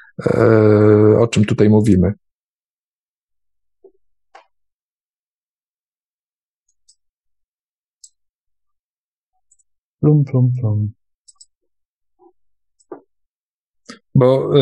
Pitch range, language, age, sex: 110-140 Hz, Polish, 50-69, male